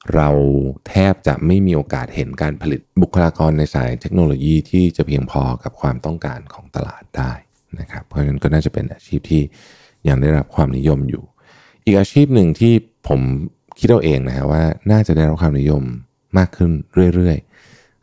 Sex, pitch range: male, 70-90 Hz